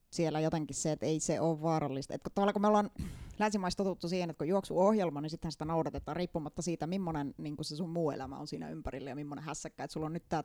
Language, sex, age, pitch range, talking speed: Finnish, female, 20-39, 140-165 Hz, 225 wpm